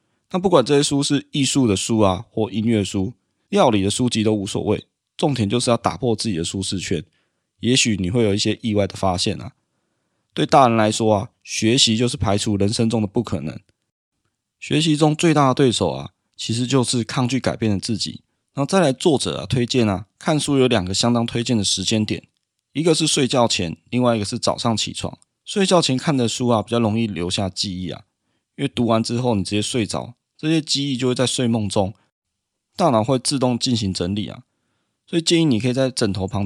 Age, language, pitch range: 20-39, Chinese, 100-130 Hz